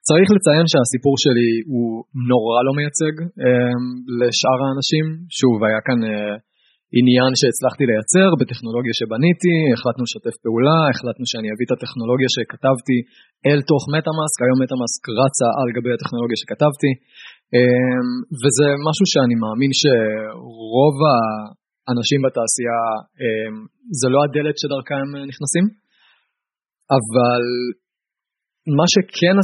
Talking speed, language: 115 wpm, Hebrew